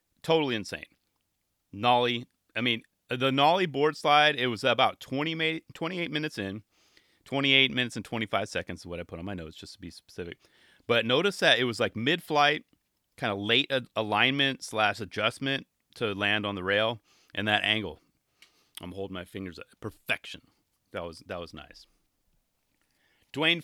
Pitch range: 105-145 Hz